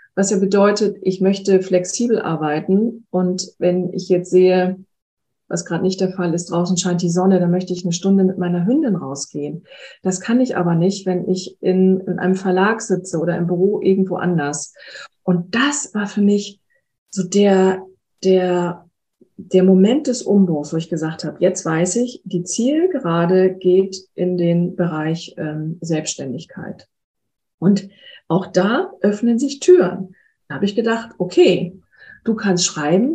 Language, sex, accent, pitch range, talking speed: German, female, German, 175-205 Hz, 160 wpm